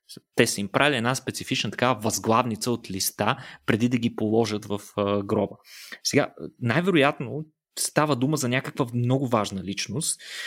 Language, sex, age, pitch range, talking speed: Bulgarian, male, 20-39, 115-150 Hz, 145 wpm